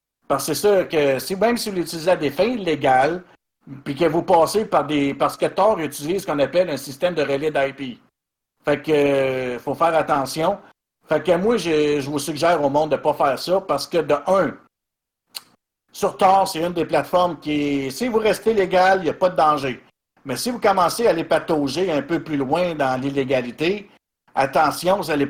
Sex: male